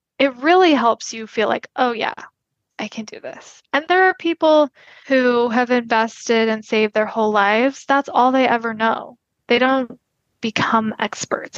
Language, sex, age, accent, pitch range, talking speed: English, female, 10-29, American, 215-260 Hz, 170 wpm